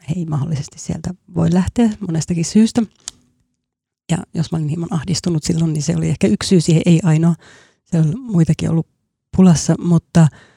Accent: native